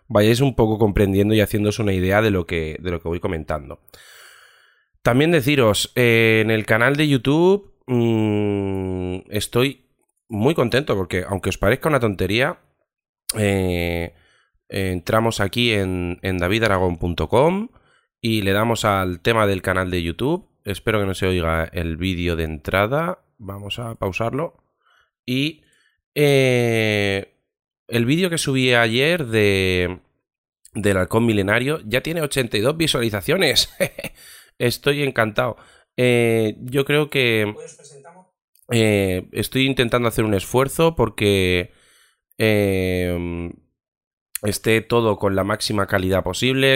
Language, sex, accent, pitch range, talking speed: Spanish, male, Spanish, 95-120 Hz, 120 wpm